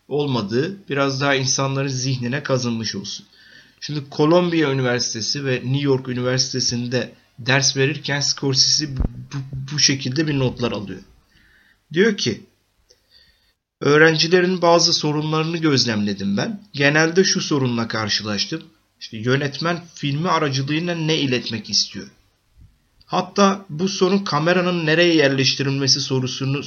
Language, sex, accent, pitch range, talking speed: Turkish, male, native, 120-160 Hz, 105 wpm